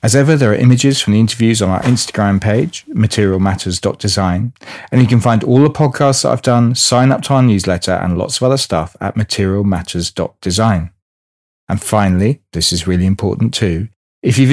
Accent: British